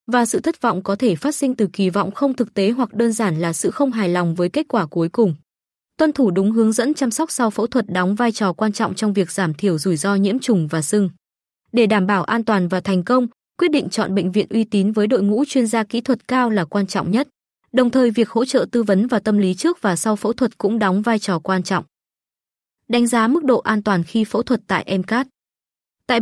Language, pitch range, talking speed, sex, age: Vietnamese, 190-245 Hz, 255 wpm, female, 20-39